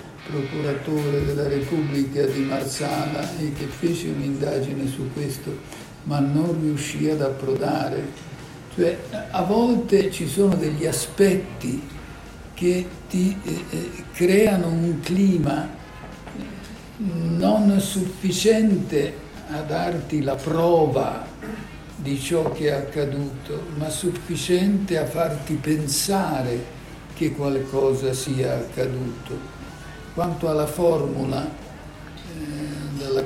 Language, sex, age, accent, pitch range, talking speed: Italian, male, 60-79, native, 140-170 Hz, 95 wpm